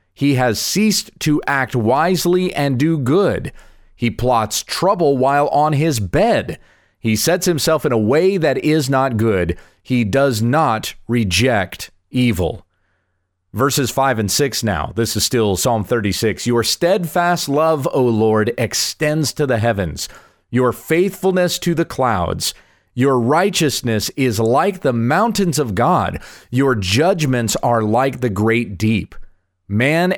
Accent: American